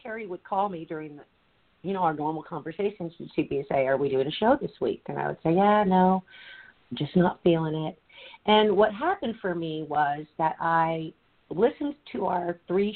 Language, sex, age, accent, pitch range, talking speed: English, female, 50-69, American, 150-185 Hz, 200 wpm